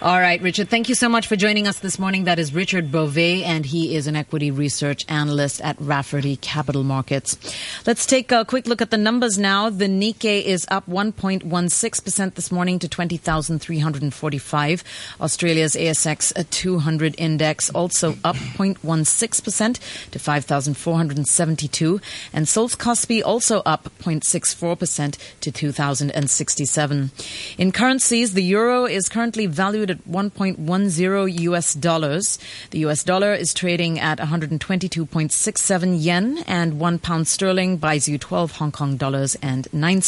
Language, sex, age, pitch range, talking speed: English, female, 30-49, 150-200 Hz, 140 wpm